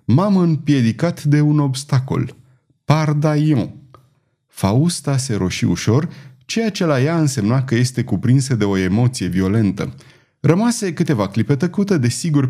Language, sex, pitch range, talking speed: Romanian, male, 110-150 Hz, 130 wpm